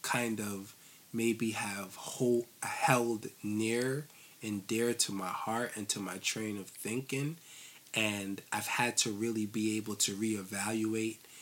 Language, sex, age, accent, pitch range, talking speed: English, male, 20-39, American, 100-115 Hz, 135 wpm